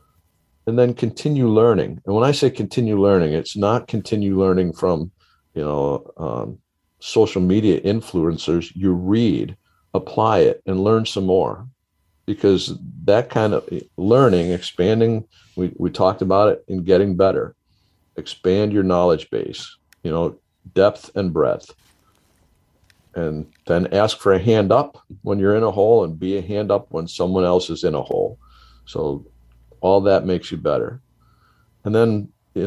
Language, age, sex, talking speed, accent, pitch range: English, 50-69, male, 155 wpm, American, 90-110 Hz